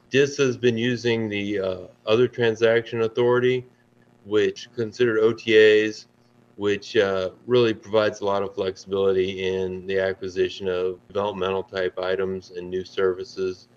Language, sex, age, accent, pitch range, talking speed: English, male, 30-49, American, 95-110 Hz, 130 wpm